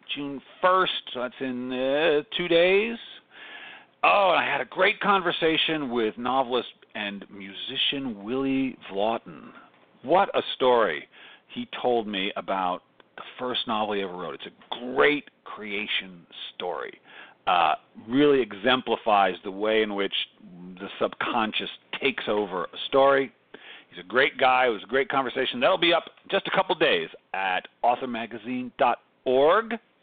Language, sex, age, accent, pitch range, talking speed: English, male, 50-69, American, 115-160 Hz, 140 wpm